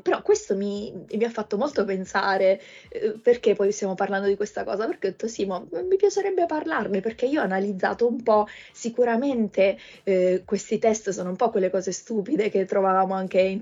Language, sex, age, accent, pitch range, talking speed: Italian, female, 20-39, native, 190-215 Hz, 185 wpm